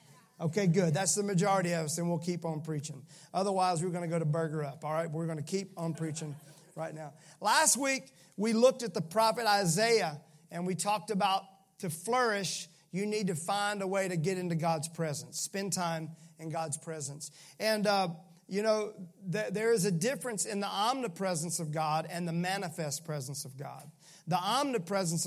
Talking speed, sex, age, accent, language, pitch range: 190 wpm, male, 40-59, American, English, 160-190 Hz